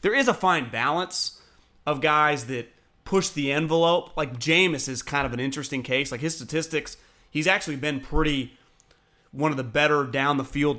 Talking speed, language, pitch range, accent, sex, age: 170 wpm, English, 135-160 Hz, American, male, 30-49